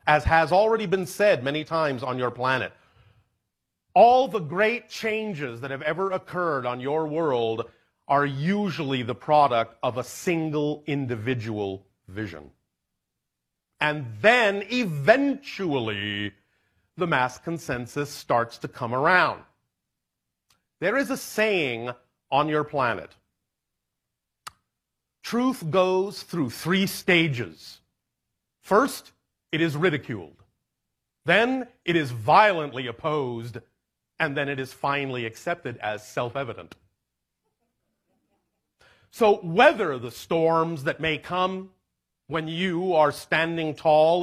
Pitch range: 125-185 Hz